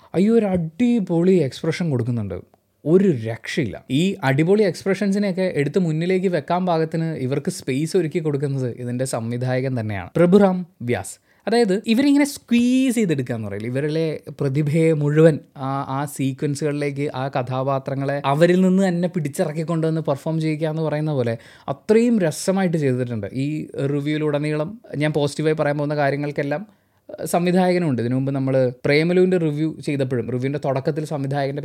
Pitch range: 130-185 Hz